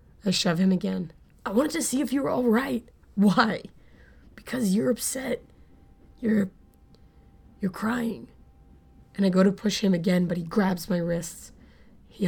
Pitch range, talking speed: 170-195 Hz, 160 wpm